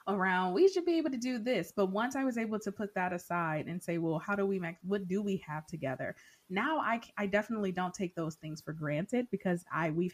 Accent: American